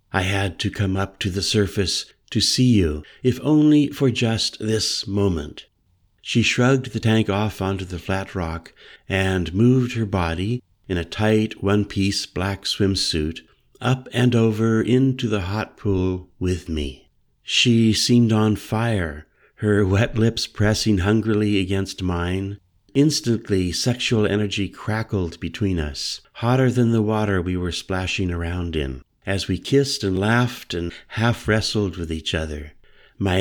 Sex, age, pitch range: male, 60-79, 95-115 Hz